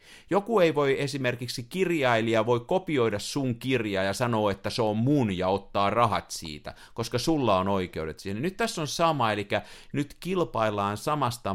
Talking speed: 165 wpm